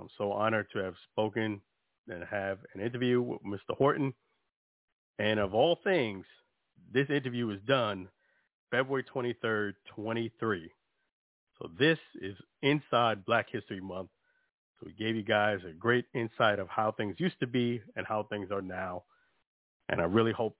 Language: English